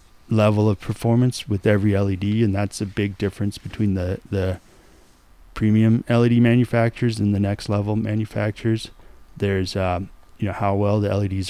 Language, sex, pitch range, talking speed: English, male, 95-110 Hz, 155 wpm